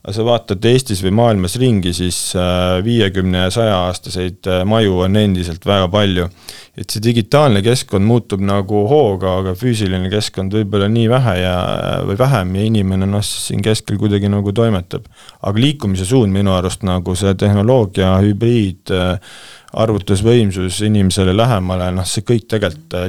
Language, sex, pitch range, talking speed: English, male, 95-110 Hz, 145 wpm